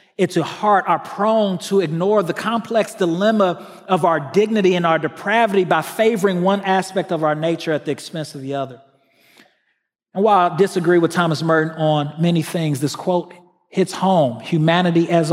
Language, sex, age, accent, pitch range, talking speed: English, male, 40-59, American, 140-175 Hz, 175 wpm